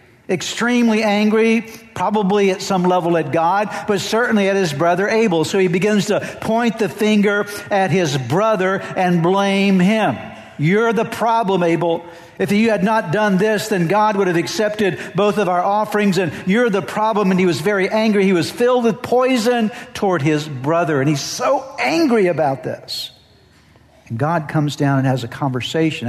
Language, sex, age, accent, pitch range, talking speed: English, male, 60-79, American, 115-195 Hz, 175 wpm